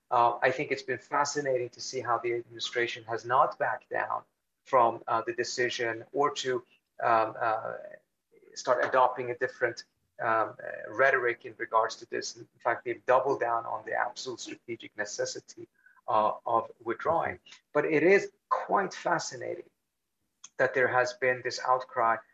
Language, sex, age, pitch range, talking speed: English, male, 30-49, 120-165 Hz, 155 wpm